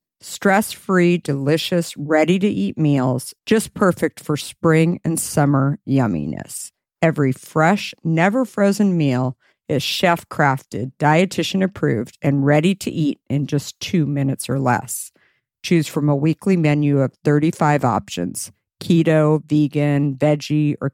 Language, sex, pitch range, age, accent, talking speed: English, female, 140-170 Hz, 50-69, American, 115 wpm